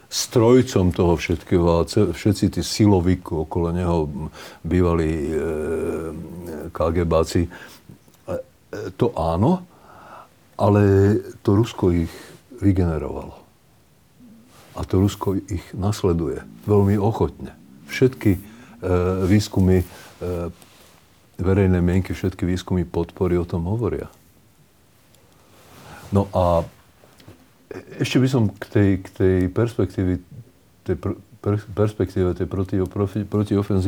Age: 50-69